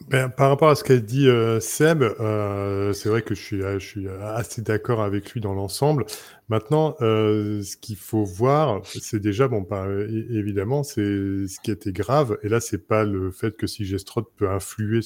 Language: French